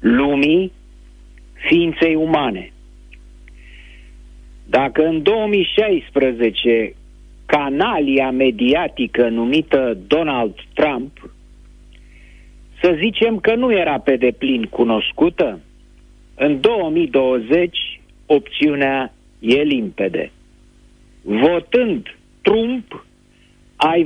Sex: male